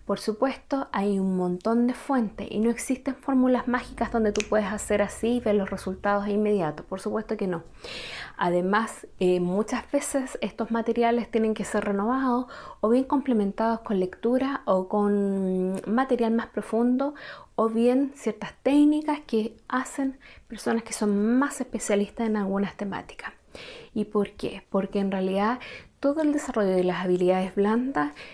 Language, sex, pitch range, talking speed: Spanish, female, 205-250 Hz, 155 wpm